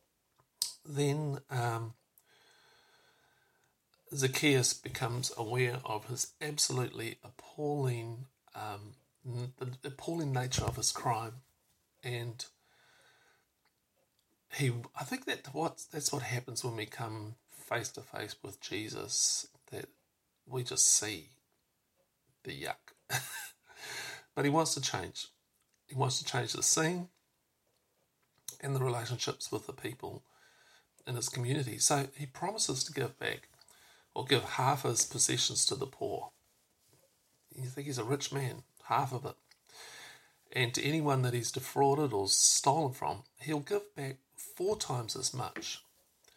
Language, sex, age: English, male, 50-69